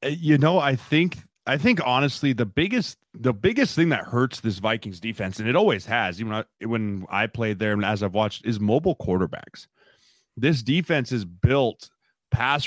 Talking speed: 190 wpm